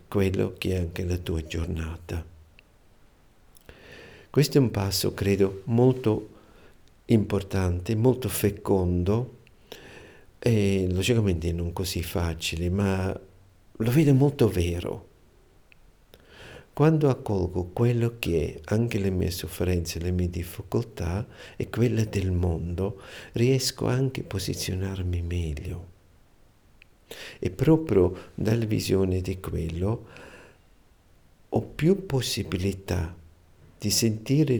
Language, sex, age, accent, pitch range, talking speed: Italian, male, 50-69, native, 85-110 Hz, 100 wpm